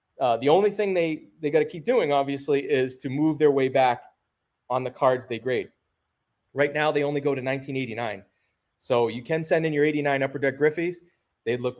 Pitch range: 125-160 Hz